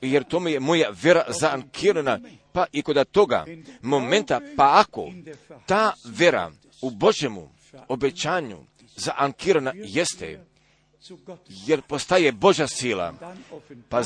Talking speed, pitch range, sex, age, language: 105 wpm, 135-175 Hz, male, 50-69, Croatian